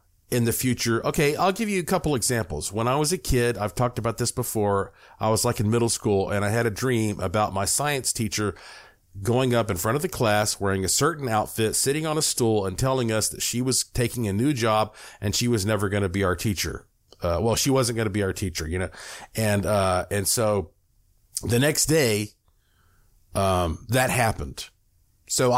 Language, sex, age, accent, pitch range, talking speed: English, male, 40-59, American, 100-125 Hz, 215 wpm